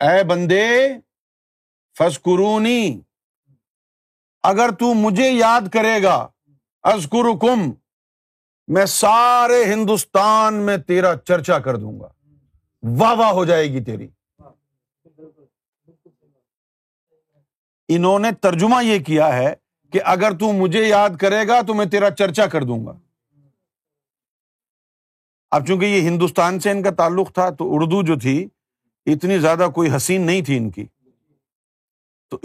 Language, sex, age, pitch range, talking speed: Urdu, male, 50-69, 135-200 Hz, 125 wpm